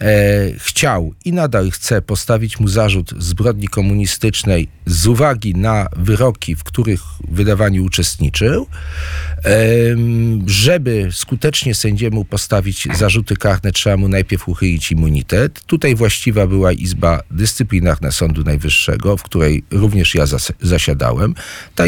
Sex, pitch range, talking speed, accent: male, 85-120 Hz, 115 wpm, native